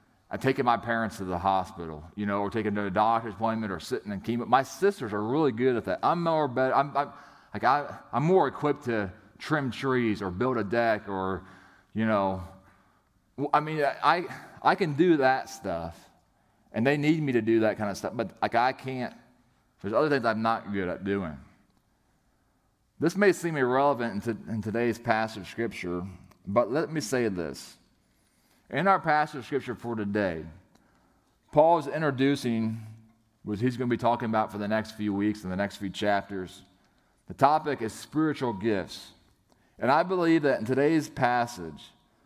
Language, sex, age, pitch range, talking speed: English, male, 30-49, 100-135 Hz, 185 wpm